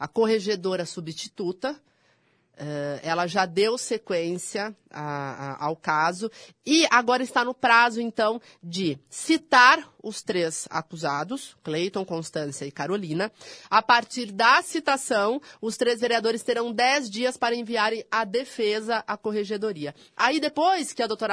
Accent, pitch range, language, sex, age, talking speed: Brazilian, 180-235 Hz, Portuguese, female, 30-49, 125 wpm